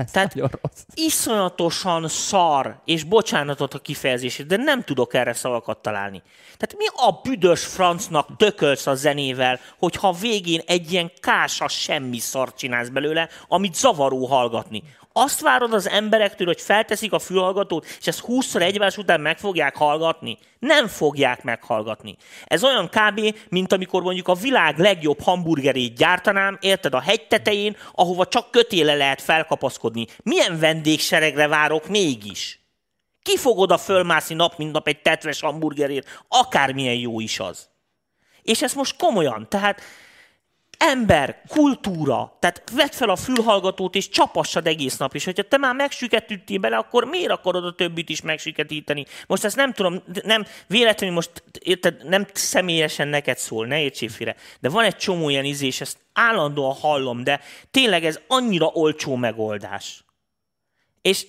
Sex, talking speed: male, 145 wpm